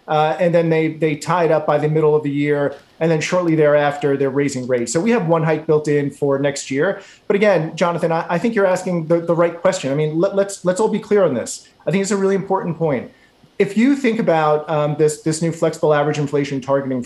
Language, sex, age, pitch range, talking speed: English, male, 30-49, 150-200 Hz, 255 wpm